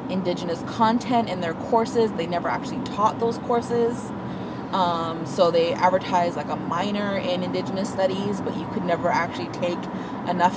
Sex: female